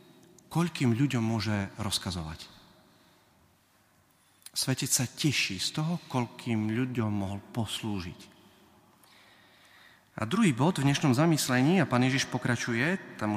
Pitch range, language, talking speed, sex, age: 110-140 Hz, Slovak, 110 wpm, male, 40-59